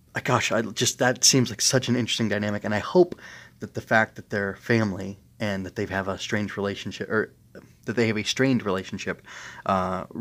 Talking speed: 205 wpm